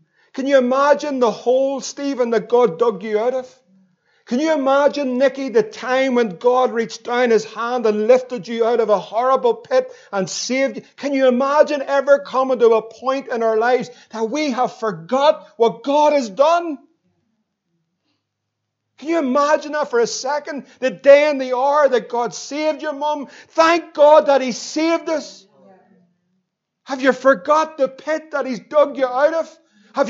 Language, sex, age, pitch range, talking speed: English, male, 50-69, 230-295 Hz, 175 wpm